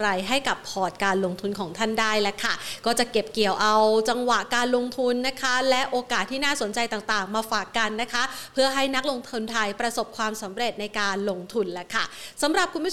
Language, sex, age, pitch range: Thai, female, 30-49, 215-255 Hz